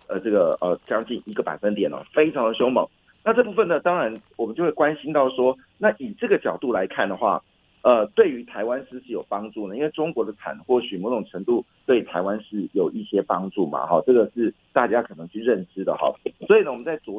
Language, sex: Chinese, male